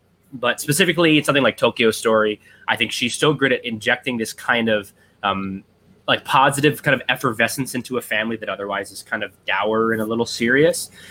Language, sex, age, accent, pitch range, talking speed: English, male, 20-39, American, 100-125 Hz, 195 wpm